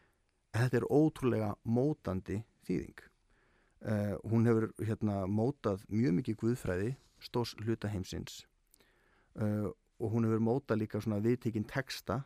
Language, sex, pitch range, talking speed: English, male, 105-125 Hz, 115 wpm